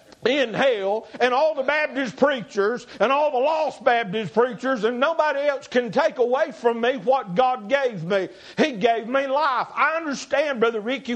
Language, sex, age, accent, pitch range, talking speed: English, male, 50-69, American, 210-270 Hz, 175 wpm